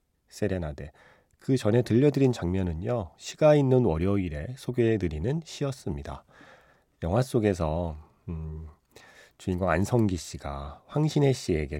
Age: 40-59